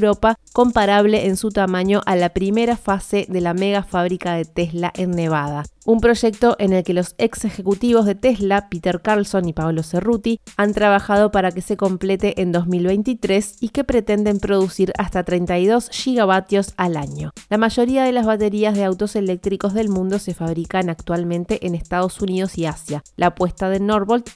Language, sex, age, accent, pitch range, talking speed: Spanish, female, 30-49, Argentinian, 175-210 Hz, 175 wpm